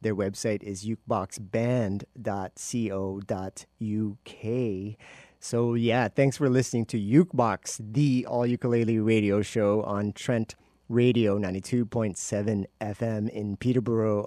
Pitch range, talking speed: 110-130 Hz, 95 wpm